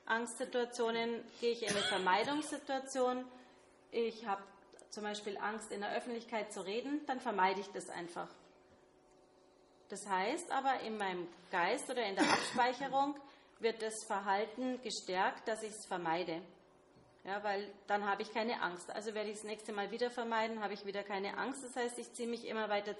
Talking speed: 170 wpm